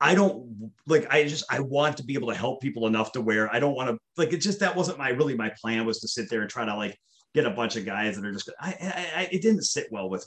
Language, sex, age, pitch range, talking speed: English, male, 30-49, 110-150 Hz, 310 wpm